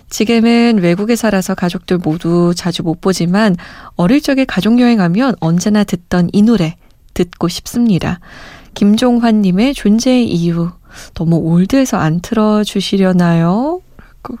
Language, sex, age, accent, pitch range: Korean, female, 20-39, native, 180-235 Hz